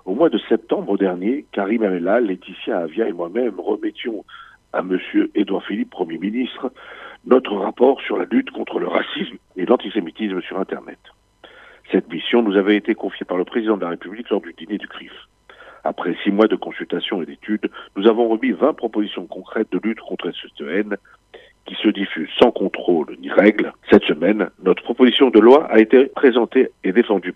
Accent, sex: French, male